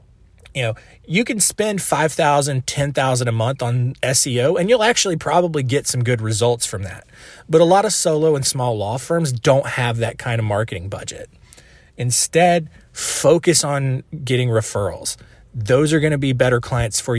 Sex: male